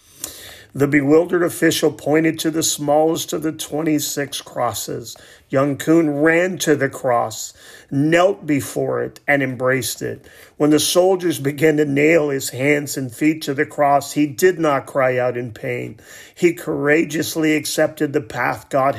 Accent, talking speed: American, 155 wpm